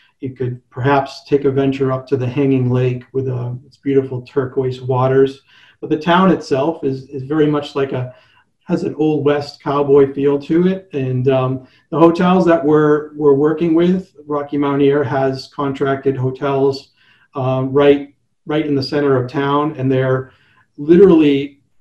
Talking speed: 170 wpm